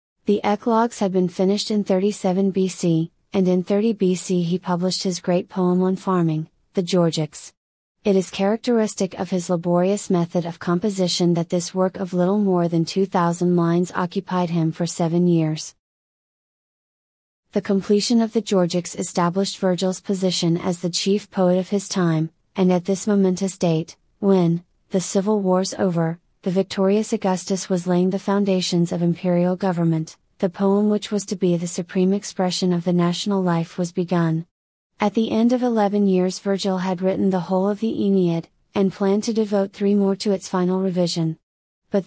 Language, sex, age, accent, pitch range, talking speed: English, female, 30-49, American, 175-200 Hz, 170 wpm